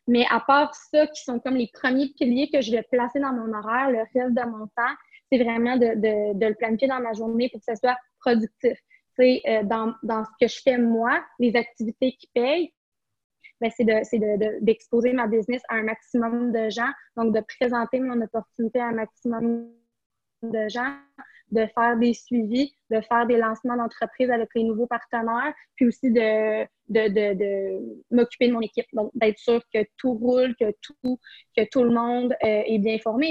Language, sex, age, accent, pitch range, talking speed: French, female, 20-39, Canadian, 225-255 Hz, 205 wpm